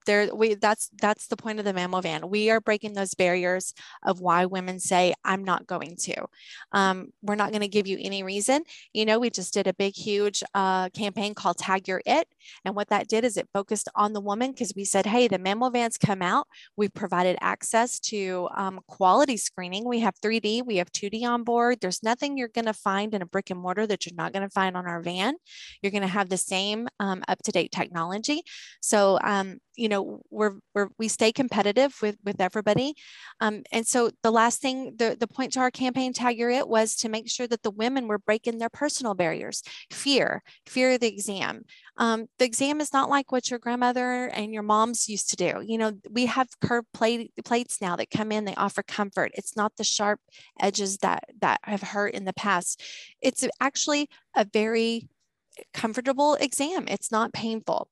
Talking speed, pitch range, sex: 210 wpm, 195-240 Hz, female